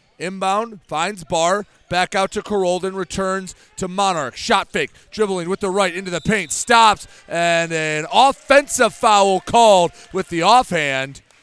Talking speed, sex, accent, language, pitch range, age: 145 wpm, male, American, English, 170-205 Hz, 30-49